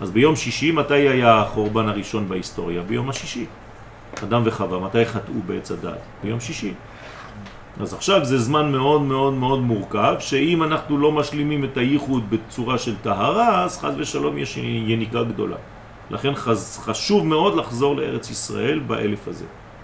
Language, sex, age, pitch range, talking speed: French, male, 40-59, 110-140 Hz, 140 wpm